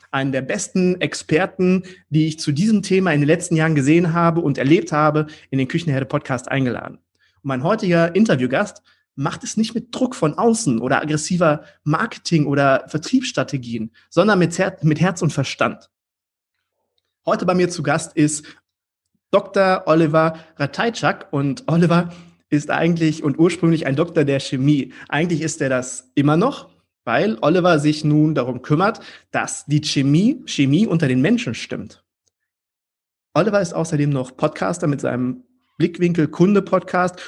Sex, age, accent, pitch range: male, 30-49, German, 145-180 Hz